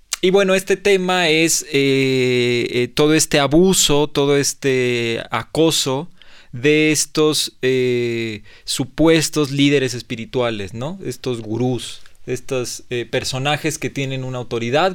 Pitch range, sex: 125-165 Hz, male